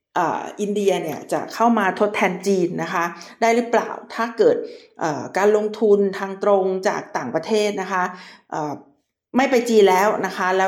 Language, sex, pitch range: Thai, female, 185-230 Hz